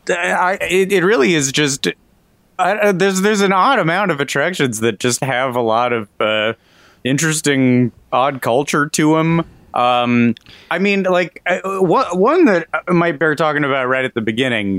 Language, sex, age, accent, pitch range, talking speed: English, male, 30-49, American, 100-135 Hz, 175 wpm